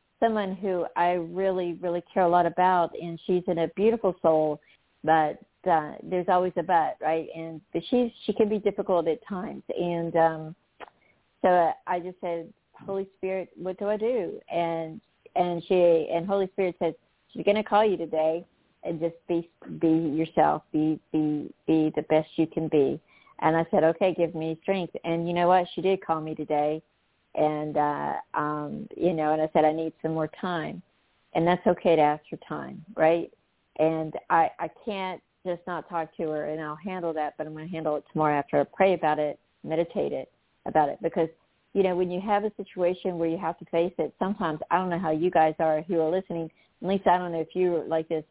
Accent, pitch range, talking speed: American, 160-185 Hz, 210 wpm